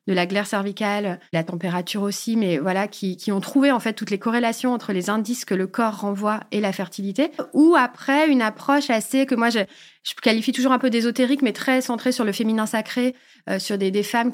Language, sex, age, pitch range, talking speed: French, female, 30-49, 200-250 Hz, 225 wpm